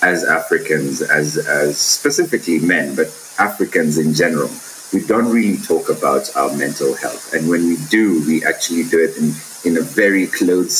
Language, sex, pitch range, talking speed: English, male, 80-115 Hz, 170 wpm